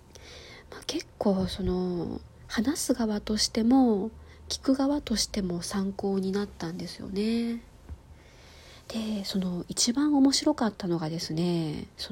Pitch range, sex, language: 185-265 Hz, female, Japanese